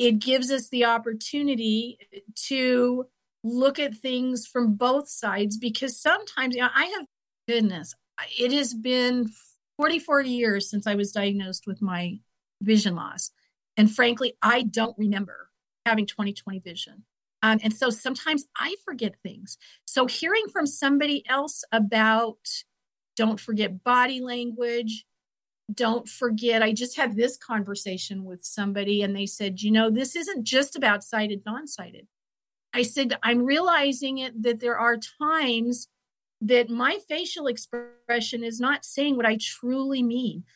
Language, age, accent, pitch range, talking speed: English, 50-69, American, 220-270 Hz, 145 wpm